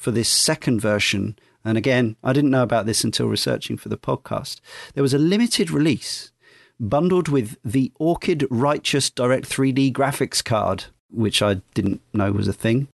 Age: 40-59